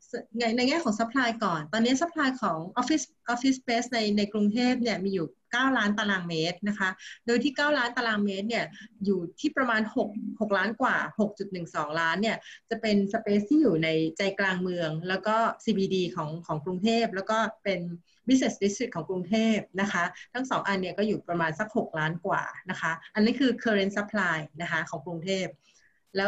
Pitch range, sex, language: 185-230 Hz, female, Thai